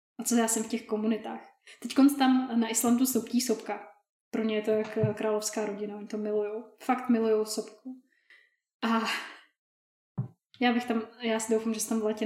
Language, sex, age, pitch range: Czech, female, 10-29, 210-230 Hz